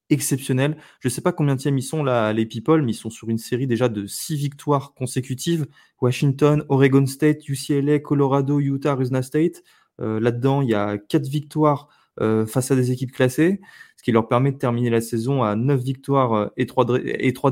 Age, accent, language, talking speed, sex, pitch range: 20-39, French, French, 195 wpm, male, 120-145 Hz